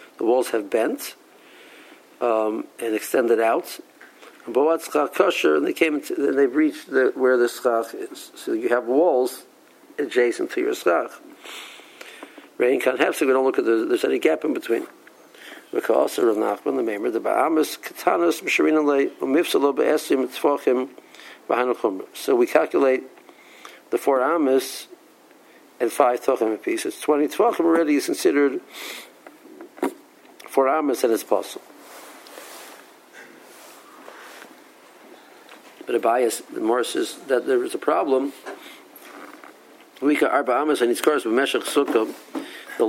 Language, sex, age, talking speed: English, male, 60-79, 110 wpm